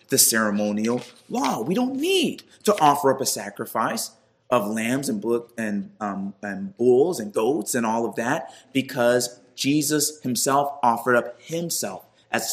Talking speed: 155 wpm